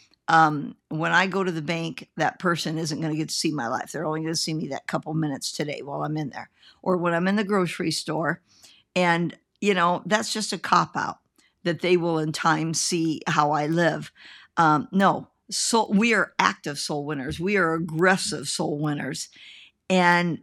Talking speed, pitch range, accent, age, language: 200 wpm, 160-195 Hz, American, 50-69, English